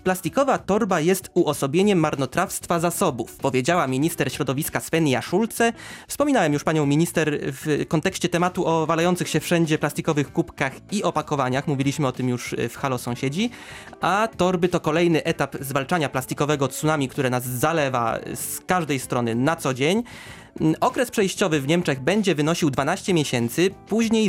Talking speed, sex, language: 145 wpm, male, Polish